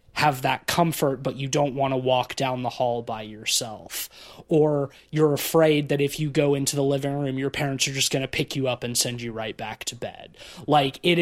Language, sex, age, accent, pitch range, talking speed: English, male, 20-39, American, 135-160 Hz, 230 wpm